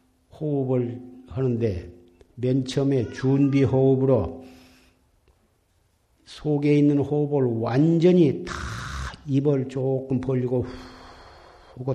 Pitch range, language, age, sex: 110-145 Hz, Korean, 60-79, male